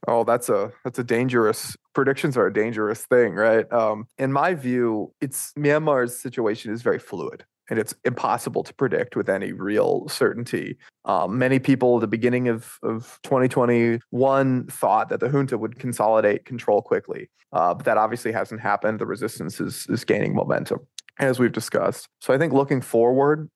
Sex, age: male, 20-39